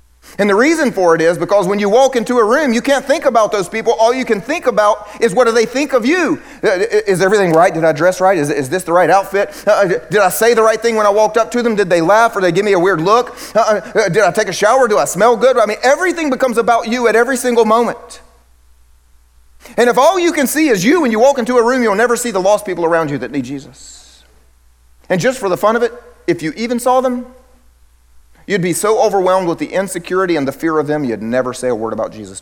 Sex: male